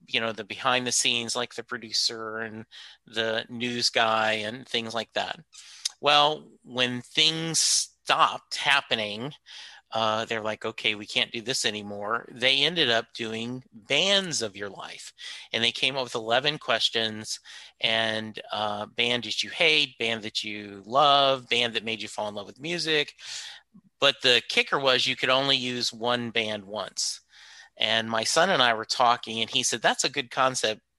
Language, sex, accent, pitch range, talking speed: English, male, American, 115-155 Hz, 175 wpm